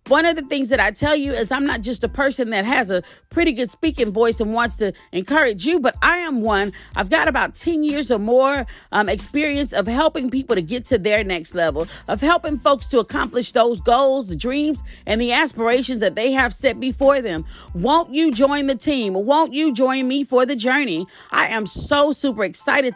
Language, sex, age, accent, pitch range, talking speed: English, female, 40-59, American, 225-280 Hz, 215 wpm